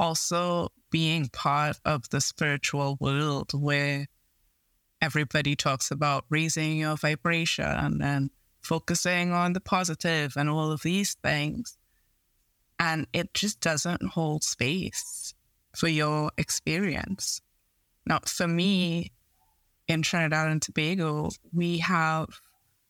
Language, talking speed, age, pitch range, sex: English, 115 wpm, 20-39, 150-170 Hz, female